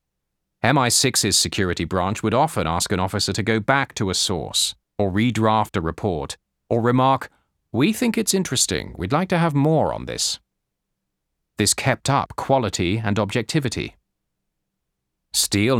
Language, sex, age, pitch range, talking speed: English, male, 40-59, 85-120 Hz, 145 wpm